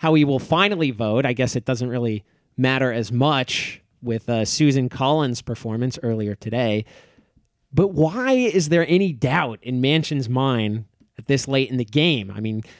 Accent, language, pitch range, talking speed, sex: American, English, 125-175 Hz, 175 wpm, male